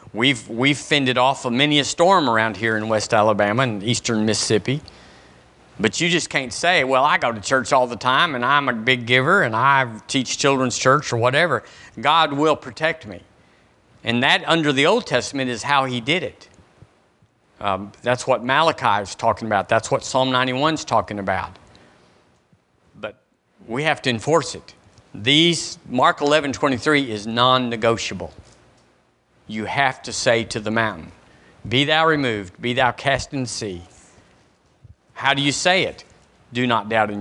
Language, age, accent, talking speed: English, 50-69, American, 175 wpm